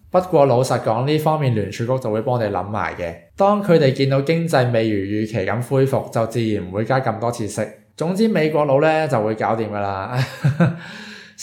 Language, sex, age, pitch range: Chinese, male, 20-39, 110-135 Hz